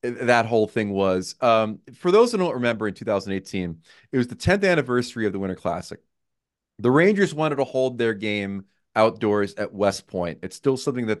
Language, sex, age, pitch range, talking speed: English, male, 30-49, 105-140 Hz, 195 wpm